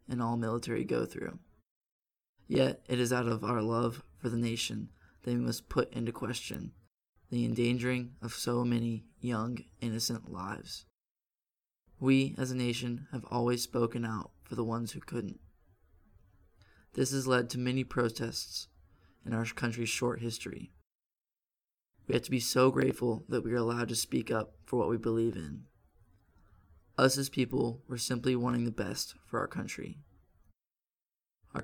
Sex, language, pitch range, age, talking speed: male, English, 105-125 Hz, 20-39, 155 wpm